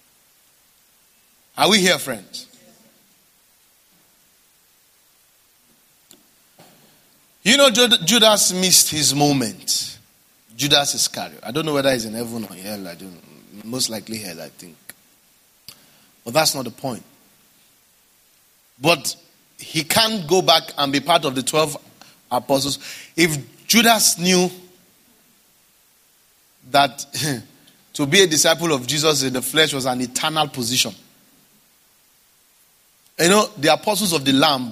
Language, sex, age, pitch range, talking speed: English, male, 30-49, 130-165 Hz, 120 wpm